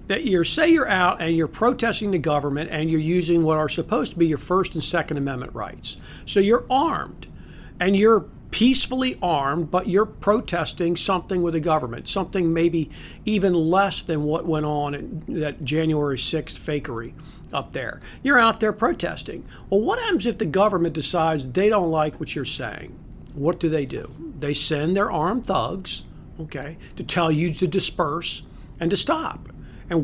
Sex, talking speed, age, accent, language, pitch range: male, 180 wpm, 50-69, American, English, 150-195 Hz